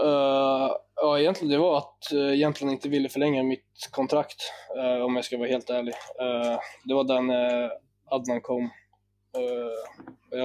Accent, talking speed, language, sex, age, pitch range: native, 155 wpm, Swedish, male, 20-39, 120-135 Hz